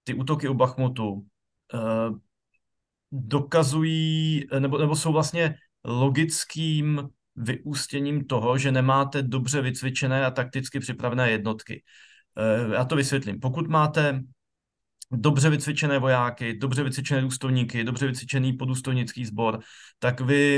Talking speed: 115 wpm